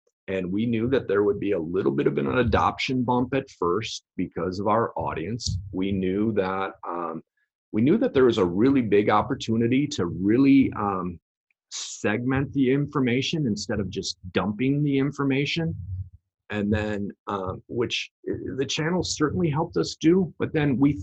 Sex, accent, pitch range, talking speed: male, American, 100-140 Hz, 165 wpm